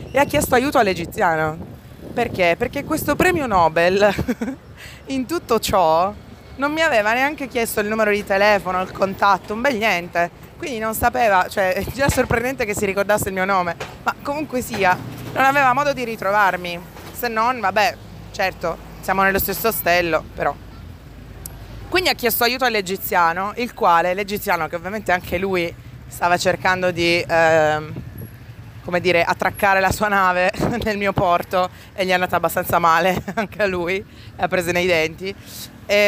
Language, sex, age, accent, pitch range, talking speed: Italian, female, 20-39, native, 165-215 Hz, 160 wpm